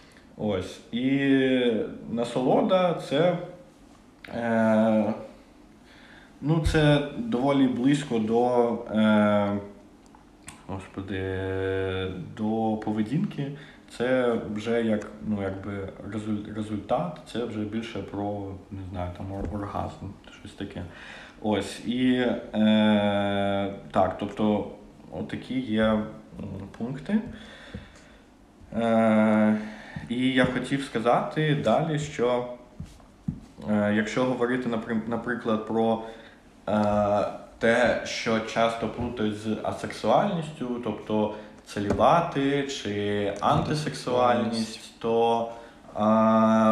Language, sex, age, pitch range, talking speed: Ukrainian, male, 20-39, 105-125 Hz, 85 wpm